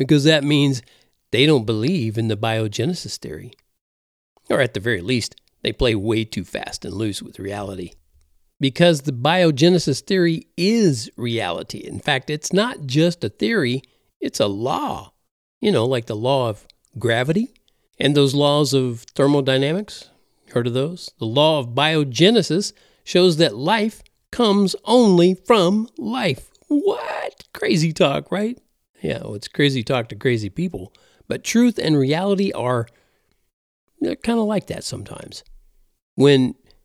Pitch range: 120-180 Hz